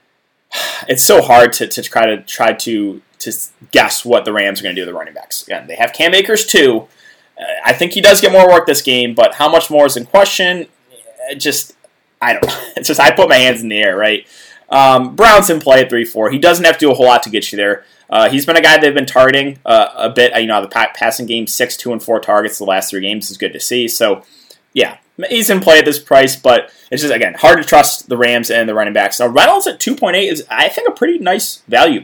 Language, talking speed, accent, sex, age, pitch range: English, 260 wpm, American, male, 20-39, 125-195 Hz